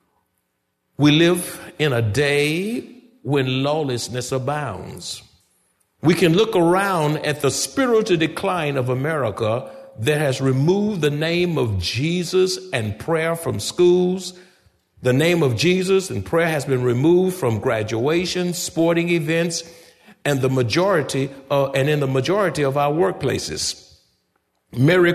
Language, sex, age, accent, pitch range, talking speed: English, male, 50-69, American, 125-180 Hz, 130 wpm